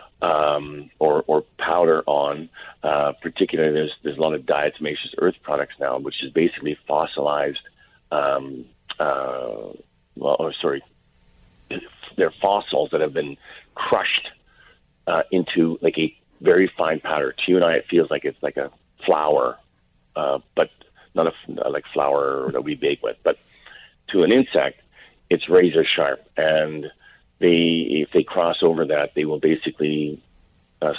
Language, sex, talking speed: English, male, 150 wpm